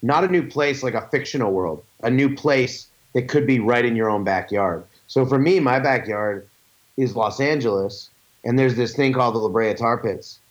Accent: American